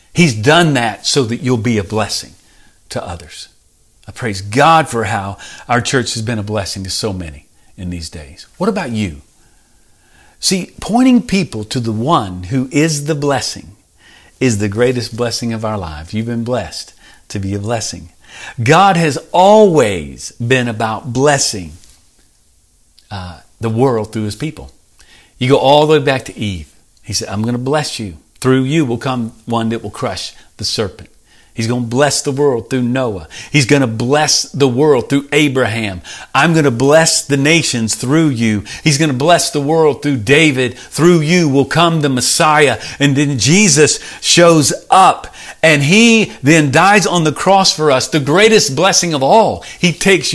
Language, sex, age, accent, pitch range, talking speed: English, male, 50-69, American, 110-155 Hz, 180 wpm